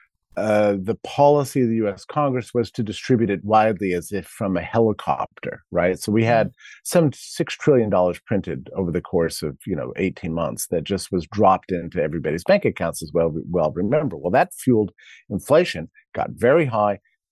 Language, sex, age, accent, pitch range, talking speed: English, male, 50-69, American, 90-115 Hz, 180 wpm